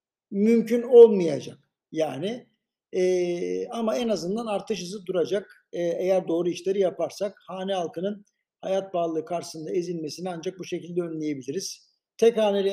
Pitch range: 175-210 Hz